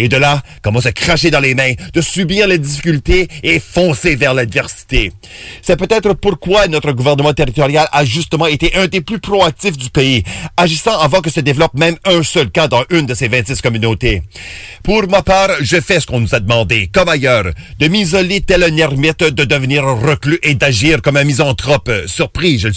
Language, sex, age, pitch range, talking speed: English, male, 40-59, 130-180 Hz, 200 wpm